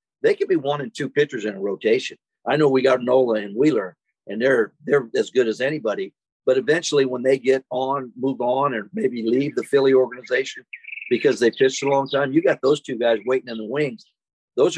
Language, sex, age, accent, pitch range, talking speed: English, male, 50-69, American, 125-170 Hz, 220 wpm